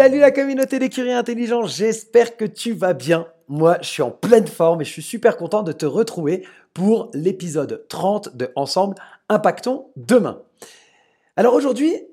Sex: male